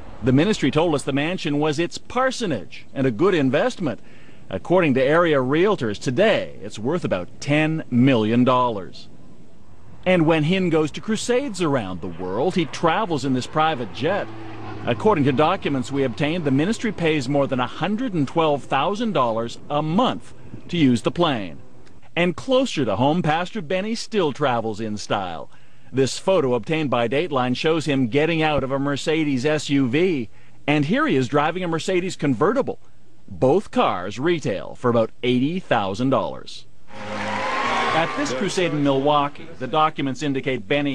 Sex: male